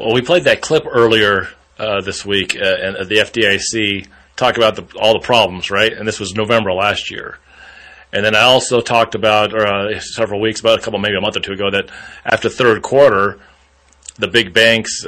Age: 30-49